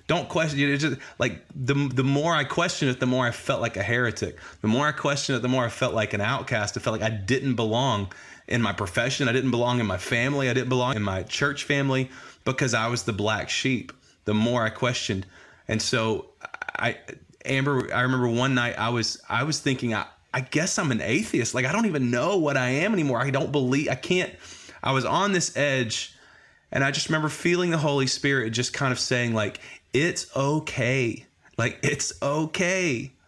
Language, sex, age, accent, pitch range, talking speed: English, male, 30-49, American, 115-140 Hz, 210 wpm